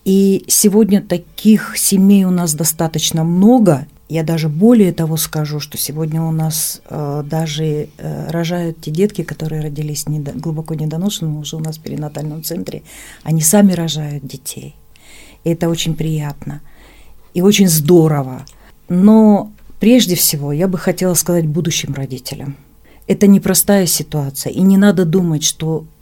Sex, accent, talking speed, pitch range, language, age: female, native, 140 wpm, 150-190 Hz, Russian, 40-59